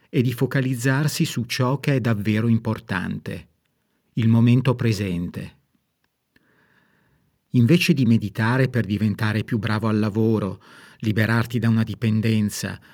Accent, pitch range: native, 110-135 Hz